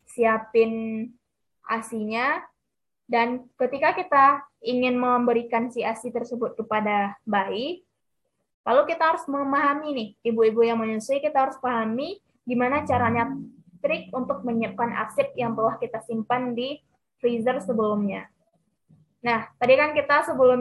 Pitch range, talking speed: 225-275 Hz, 120 wpm